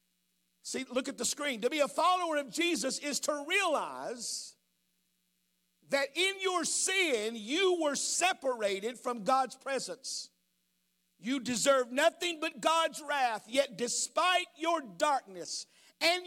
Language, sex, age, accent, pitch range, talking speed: English, male, 50-69, American, 215-300 Hz, 130 wpm